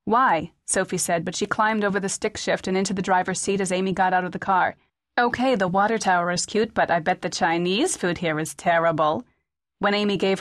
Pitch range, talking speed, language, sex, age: 180-215 Hz, 230 wpm, English, female, 30-49